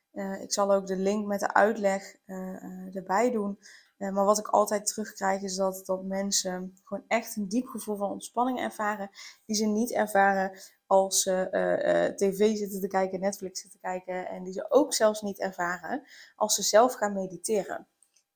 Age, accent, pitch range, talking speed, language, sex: 20-39, Dutch, 195-215 Hz, 195 wpm, Dutch, female